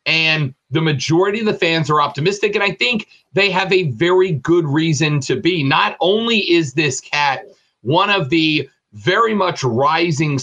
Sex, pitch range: male, 155-185 Hz